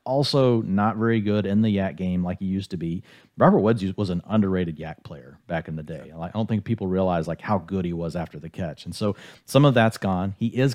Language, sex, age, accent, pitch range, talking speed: English, male, 40-59, American, 90-115 Hz, 250 wpm